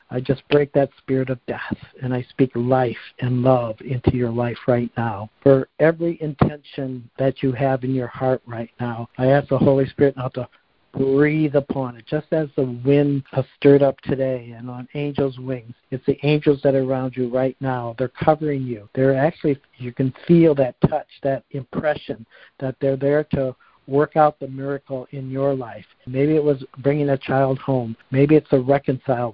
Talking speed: 190 wpm